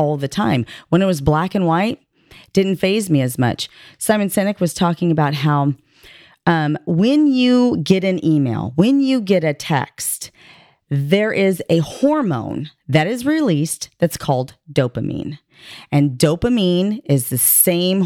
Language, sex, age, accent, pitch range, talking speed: English, female, 30-49, American, 135-185 Hz, 155 wpm